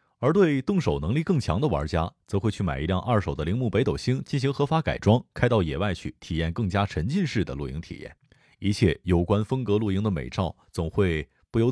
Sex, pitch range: male, 85-115 Hz